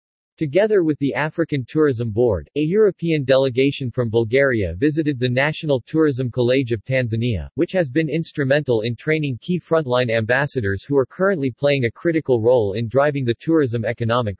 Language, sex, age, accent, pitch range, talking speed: English, male, 40-59, American, 120-150 Hz, 165 wpm